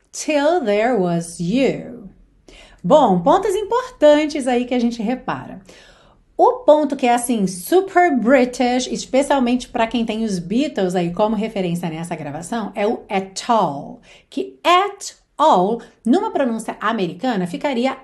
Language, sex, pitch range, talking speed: Portuguese, female, 195-275 Hz, 135 wpm